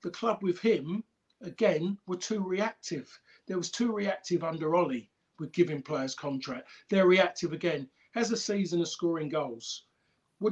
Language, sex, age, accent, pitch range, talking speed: English, male, 50-69, British, 165-195 Hz, 160 wpm